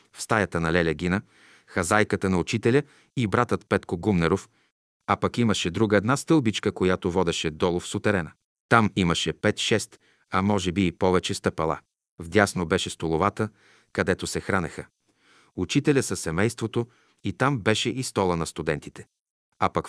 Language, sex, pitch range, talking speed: Bulgarian, male, 95-115 Hz, 150 wpm